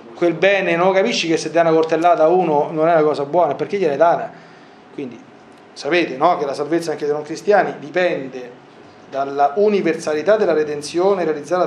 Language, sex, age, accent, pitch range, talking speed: Italian, male, 40-59, native, 145-195 Hz, 180 wpm